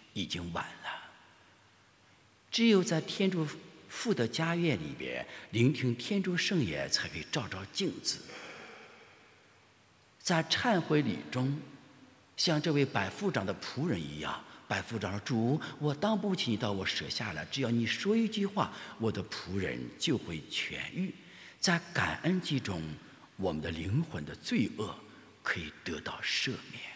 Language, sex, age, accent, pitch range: English, male, 60-79, Chinese, 105-170 Hz